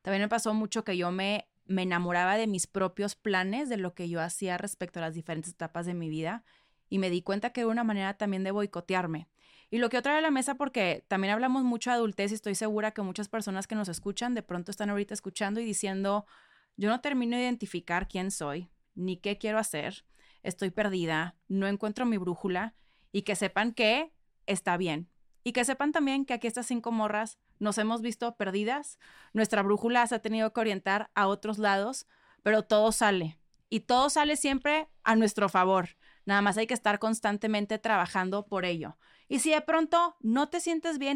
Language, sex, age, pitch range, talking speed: Spanish, female, 20-39, 190-240 Hz, 205 wpm